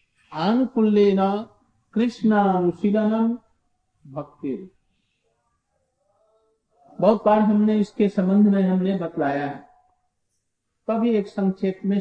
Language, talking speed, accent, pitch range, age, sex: Hindi, 80 wpm, native, 180-230 Hz, 50-69, male